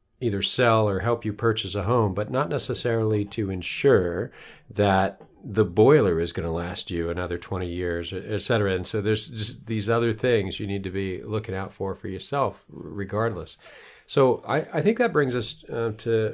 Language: English